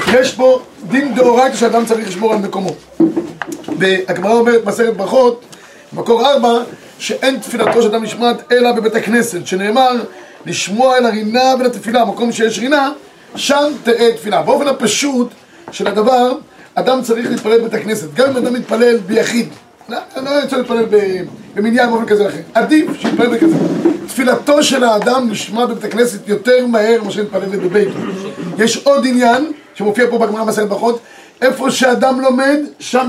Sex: male